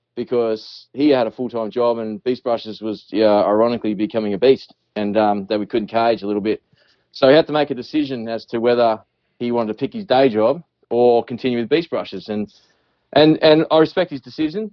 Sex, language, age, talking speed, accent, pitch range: male, English, 20-39, 215 wpm, Australian, 110-125 Hz